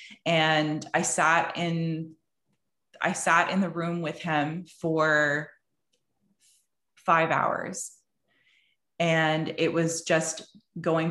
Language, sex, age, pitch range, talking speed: English, female, 20-39, 155-175 Hz, 105 wpm